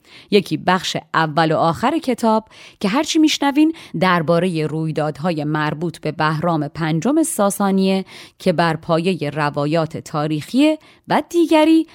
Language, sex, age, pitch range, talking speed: Persian, female, 30-49, 160-225 Hz, 115 wpm